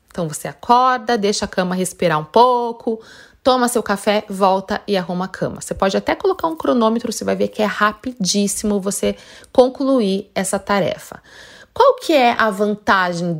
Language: Portuguese